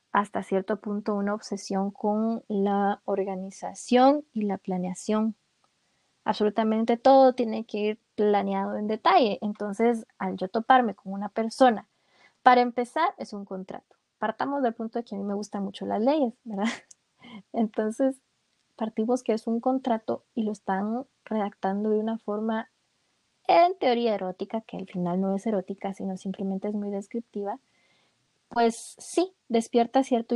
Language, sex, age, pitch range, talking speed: Spanish, female, 20-39, 200-235 Hz, 150 wpm